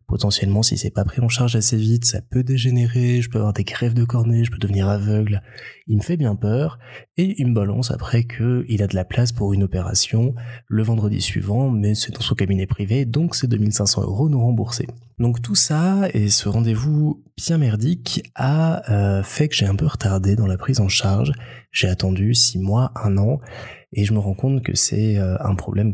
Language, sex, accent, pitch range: French, male, French, 105-125 Hz